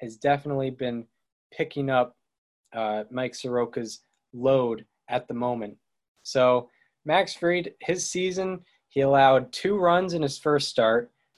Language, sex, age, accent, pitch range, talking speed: English, male, 20-39, American, 120-150 Hz, 130 wpm